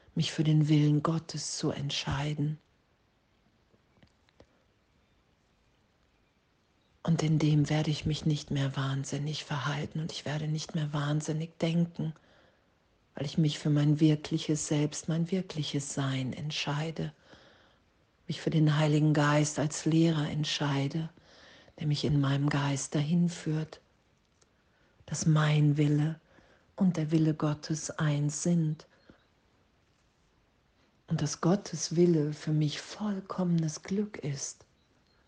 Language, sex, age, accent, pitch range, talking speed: German, female, 50-69, German, 145-160 Hz, 115 wpm